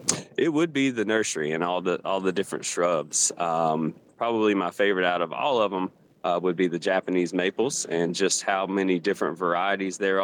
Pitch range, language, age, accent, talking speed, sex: 85-100 Hz, English, 30-49, American, 200 wpm, male